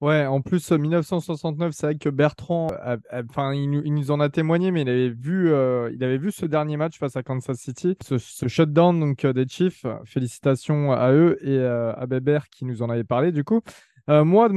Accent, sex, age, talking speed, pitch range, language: French, male, 20-39, 220 wpm, 130-160 Hz, French